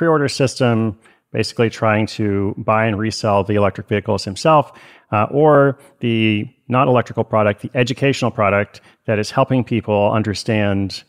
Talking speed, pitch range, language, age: 145 wpm, 100-125 Hz, English, 30-49